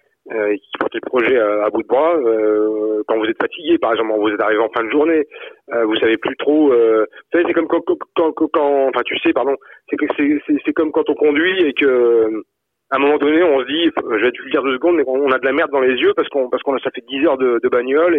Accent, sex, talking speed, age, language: French, male, 285 wpm, 40-59, French